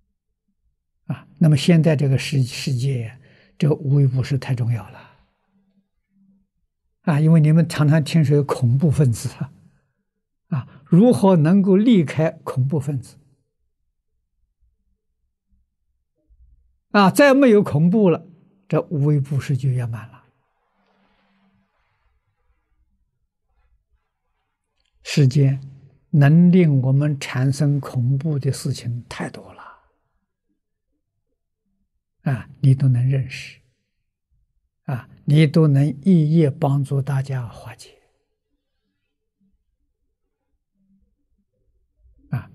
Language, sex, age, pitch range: Chinese, male, 60-79, 105-155 Hz